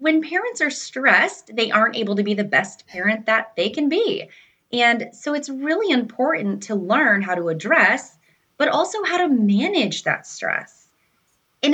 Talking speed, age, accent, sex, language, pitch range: 175 wpm, 20-39, American, female, English, 185-275 Hz